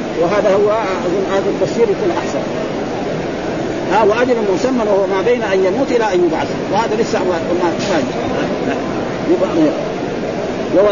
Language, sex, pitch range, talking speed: Arabic, male, 175-220 Hz, 125 wpm